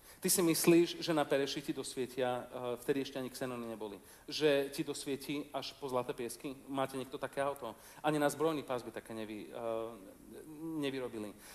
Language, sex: Slovak, male